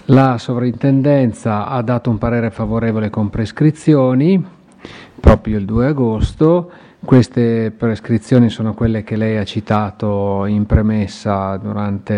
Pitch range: 110-130 Hz